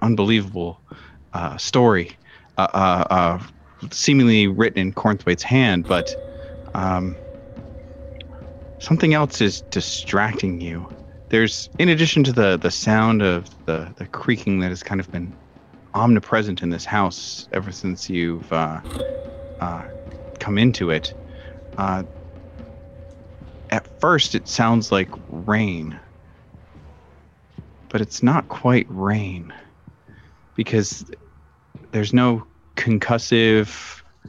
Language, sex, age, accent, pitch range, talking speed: English, male, 30-49, American, 90-110 Hz, 110 wpm